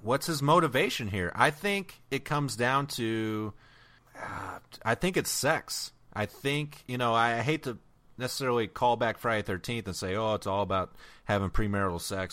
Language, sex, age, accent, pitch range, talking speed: English, male, 30-49, American, 95-125 Hz, 175 wpm